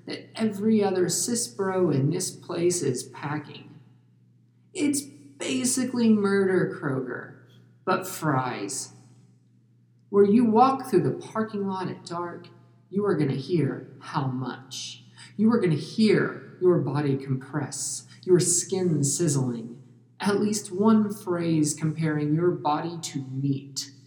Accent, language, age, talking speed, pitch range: American, English, 50-69, 120 wpm, 130-180 Hz